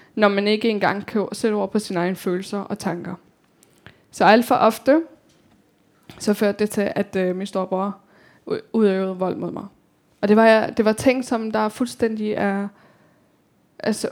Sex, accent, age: female, native, 10-29